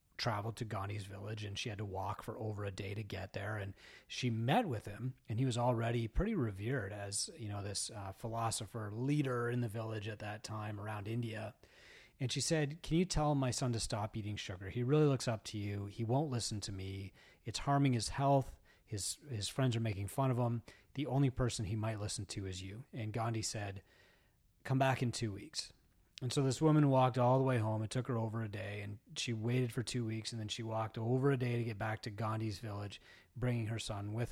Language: English